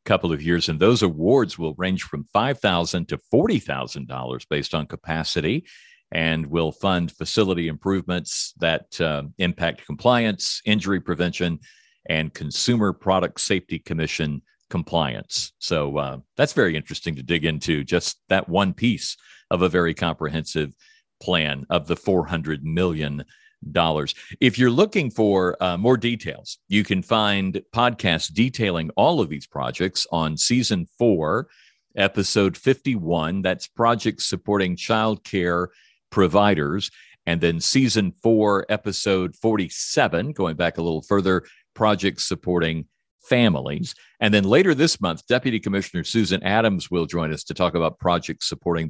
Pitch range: 80-105 Hz